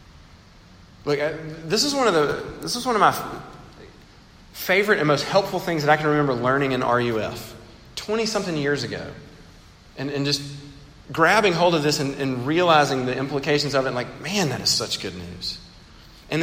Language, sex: English, male